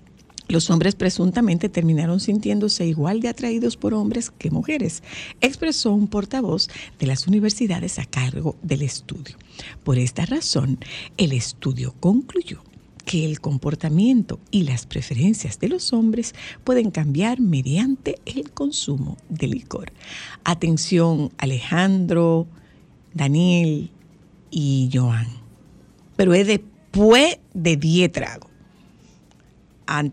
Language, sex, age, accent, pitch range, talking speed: Spanish, female, 50-69, American, 150-215 Hz, 110 wpm